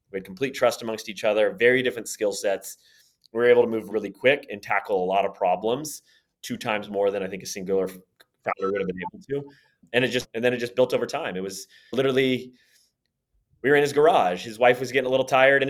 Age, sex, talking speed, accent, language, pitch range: 30-49, male, 245 wpm, American, English, 110-135 Hz